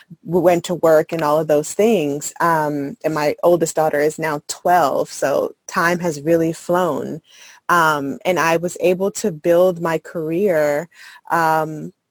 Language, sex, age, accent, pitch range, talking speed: English, female, 20-39, American, 155-190 Hz, 160 wpm